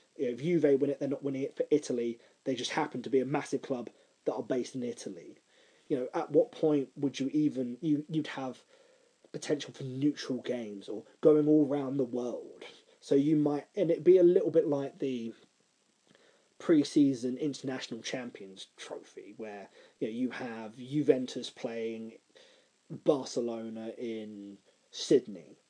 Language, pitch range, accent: English, 125-180 Hz, British